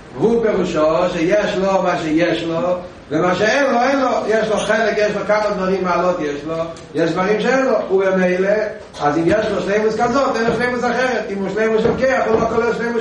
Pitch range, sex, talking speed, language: 195-230 Hz, male, 215 wpm, Hebrew